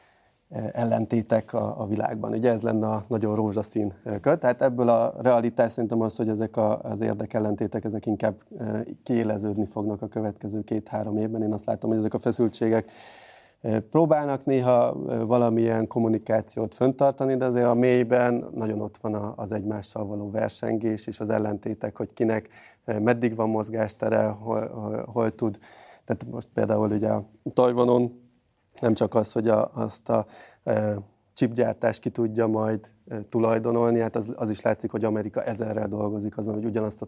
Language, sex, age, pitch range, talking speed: Hungarian, male, 30-49, 105-115 Hz, 150 wpm